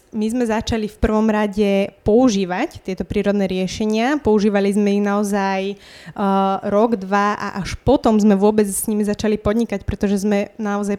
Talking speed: 160 wpm